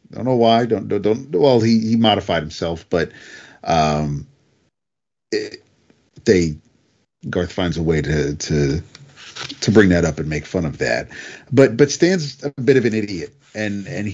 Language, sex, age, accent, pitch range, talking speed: English, male, 40-59, American, 85-115 Hz, 165 wpm